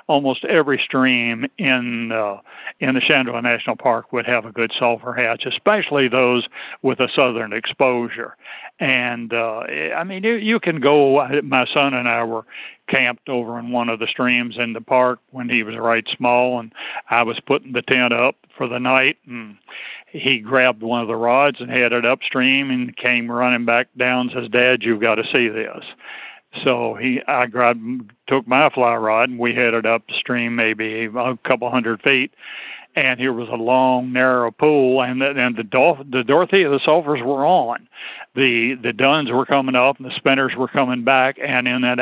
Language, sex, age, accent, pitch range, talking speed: English, male, 60-79, American, 120-135 Hz, 190 wpm